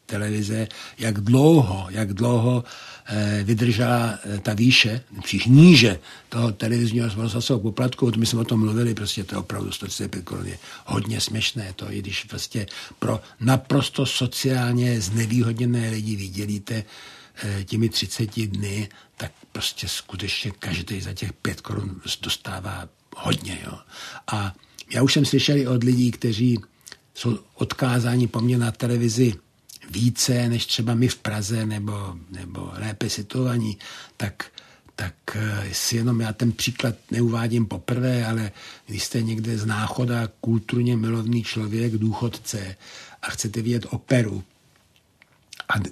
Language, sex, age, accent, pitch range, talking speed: Czech, male, 60-79, native, 105-120 Hz, 135 wpm